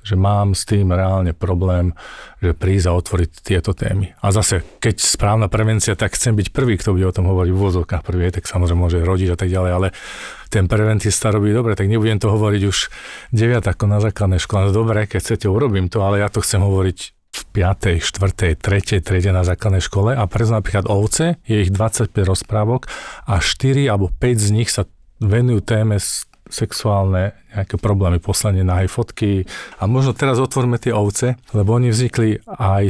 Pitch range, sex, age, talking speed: 95-110 Hz, male, 40-59, 185 wpm